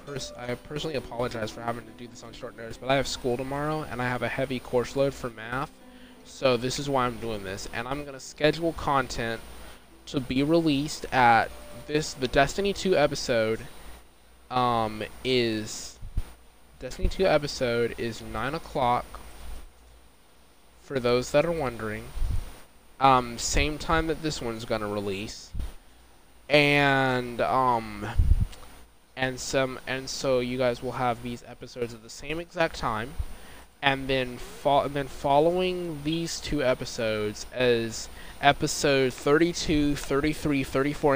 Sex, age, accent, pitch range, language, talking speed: male, 20-39, American, 115-145 Hz, English, 145 wpm